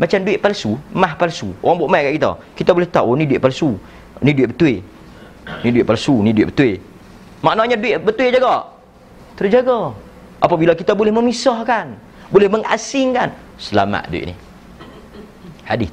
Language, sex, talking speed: Malay, male, 155 wpm